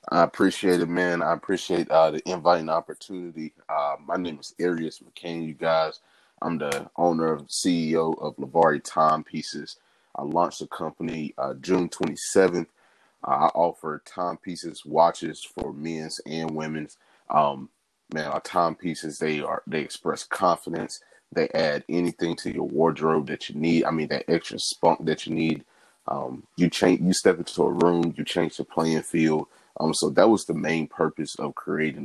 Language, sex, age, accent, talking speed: English, male, 30-49, American, 170 wpm